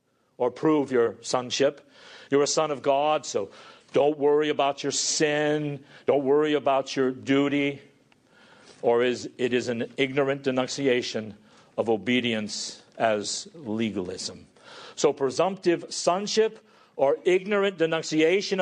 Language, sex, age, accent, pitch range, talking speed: English, male, 50-69, American, 120-155 Hz, 120 wpm